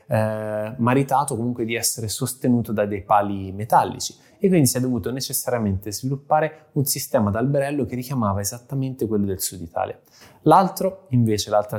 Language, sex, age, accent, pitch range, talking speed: Italian, male, 20-39, native, 105-130 Hz, 155 wpm